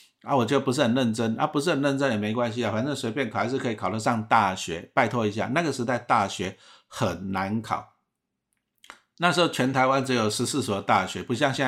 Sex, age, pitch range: male, 50-69, 110-140 Hz